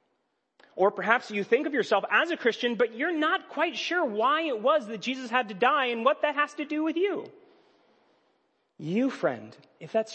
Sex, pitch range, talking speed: male, 150-215 Hz, 200 wpm